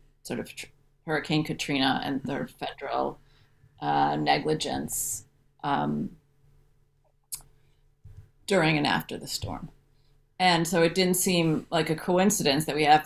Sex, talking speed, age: female, 120 wpm, 30-49